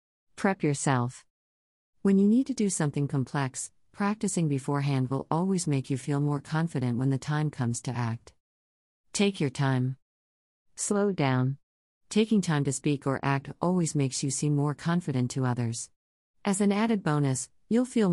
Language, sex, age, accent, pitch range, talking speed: English, female, 50-69, American, 125-160 Hz, 160 wpm